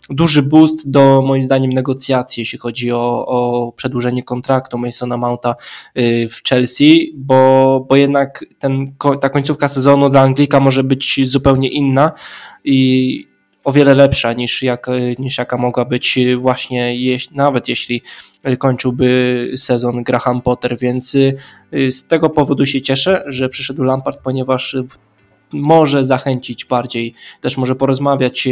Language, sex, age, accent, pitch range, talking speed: Polish, male, 20-39, native, 120-135 Hz, 125 wpm